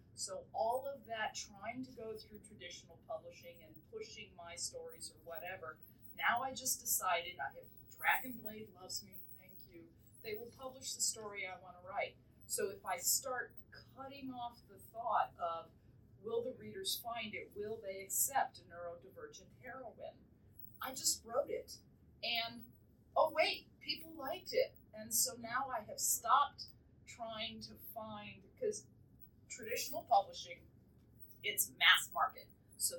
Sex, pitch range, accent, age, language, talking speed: female, 170-275 Hz, American, 30-49, English, 150 wpm